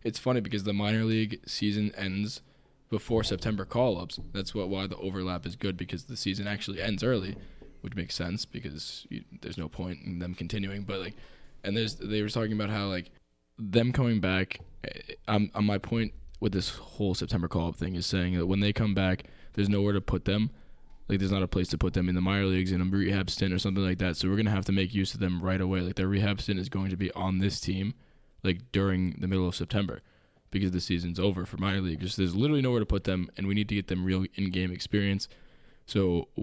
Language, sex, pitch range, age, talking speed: English, male, 90-105 Hz, 10-29, 235 wpm